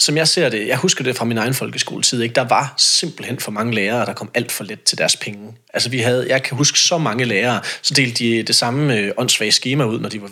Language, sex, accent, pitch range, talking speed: Danish, male, native, 110-140 Hz, 270 wpm